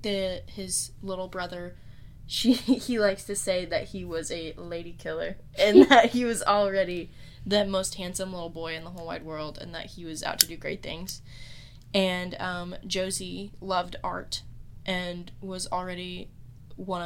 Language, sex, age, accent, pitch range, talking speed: English, female, 10-29, American, 125-185 Hz, 170 wpm